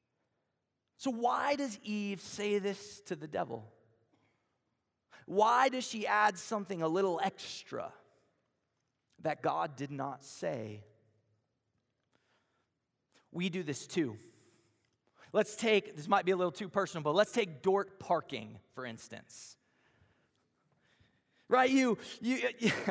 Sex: male